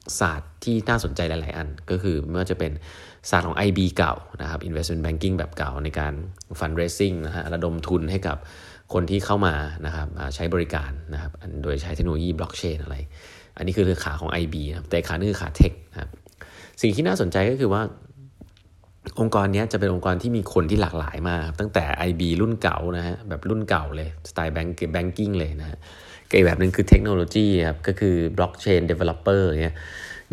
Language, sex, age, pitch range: Thai, male, 20-39, 80-95 Hz